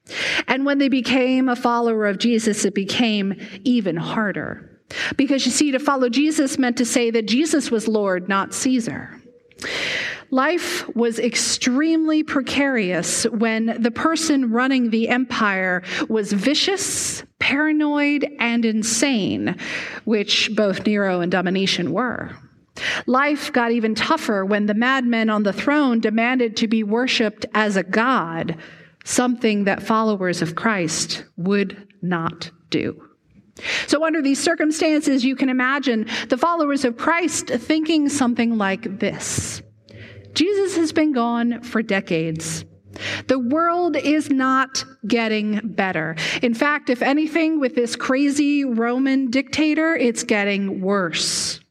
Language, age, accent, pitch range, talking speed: English, 40-59, American, 205-280 Hz, 130 wpm